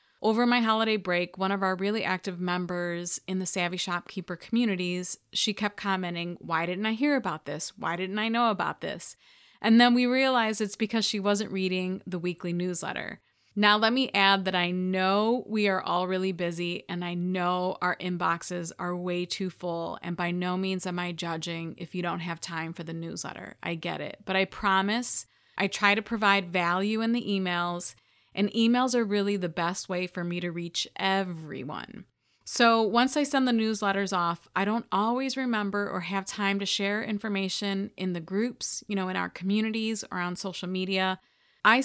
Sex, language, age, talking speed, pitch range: female, English, 30-49, 190 wpm, 180-220 Hz